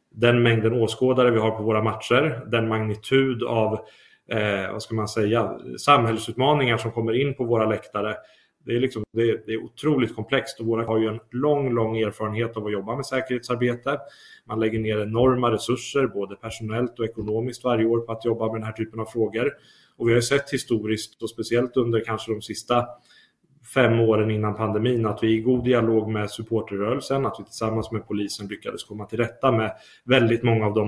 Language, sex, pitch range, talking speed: Swedish, male, 110-120 Hz, 195 wpm